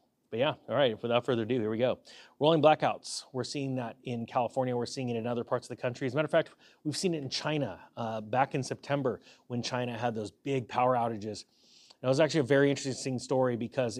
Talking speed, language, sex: 240 wpm, English, male